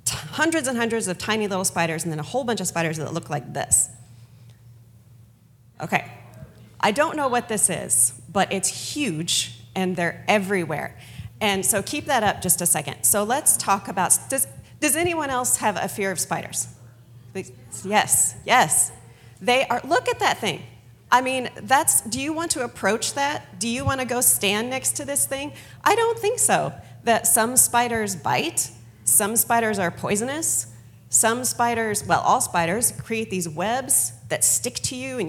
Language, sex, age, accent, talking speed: English, female, 30-49, American, 175 wpm